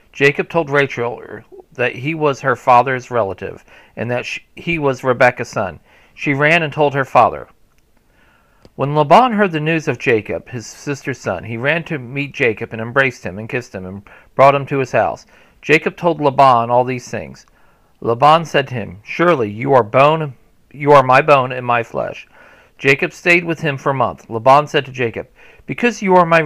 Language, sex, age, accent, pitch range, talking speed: English, male, 50-69, American, 120-150 Hz, 185 wpm